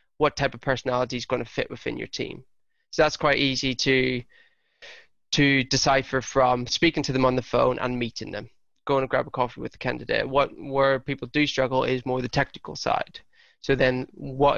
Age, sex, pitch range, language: 20-39, male, 125-150 Hz, English